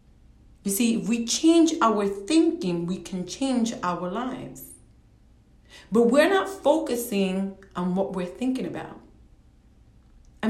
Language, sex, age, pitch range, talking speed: English, female, 30-49, 180-235 Hz, 125 wpm